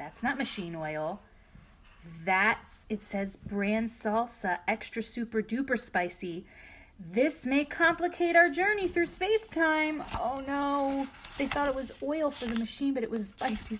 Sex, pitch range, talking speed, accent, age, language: female, 210-325 Hz, 150 wpm, American, 30-49, English